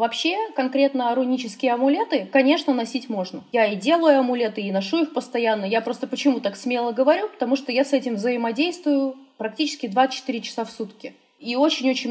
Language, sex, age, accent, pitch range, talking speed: Russian, female, 20-39, native, 230-290 Hz, 170 wpm